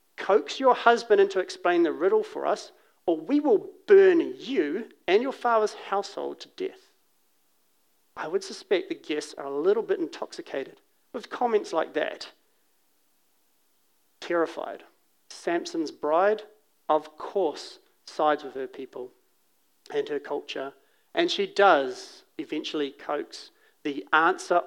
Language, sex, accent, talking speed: English, male, Australian, 130 wpm